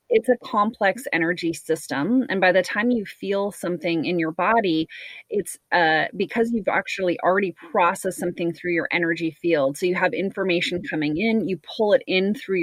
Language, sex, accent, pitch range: English, female, American, 170-200 Hz